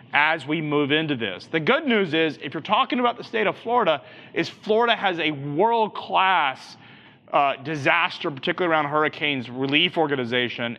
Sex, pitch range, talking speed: male, 125-175 Hz, 155 wpm